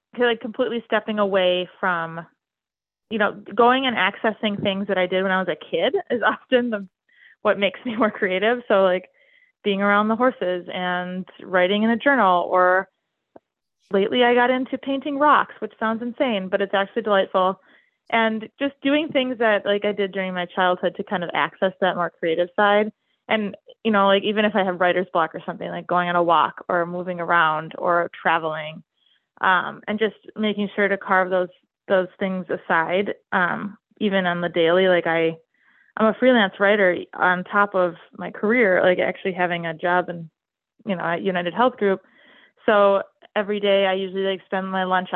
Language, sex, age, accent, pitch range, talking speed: English, female, 20-39, American, 180-215 Hz, 185 wpm